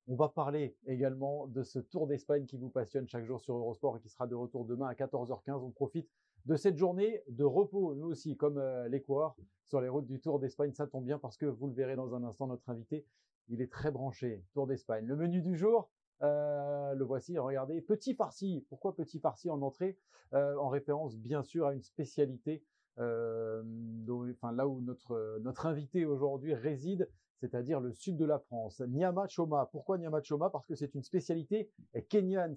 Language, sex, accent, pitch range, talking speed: French, male, French, 125-160 Hz, 205 wpm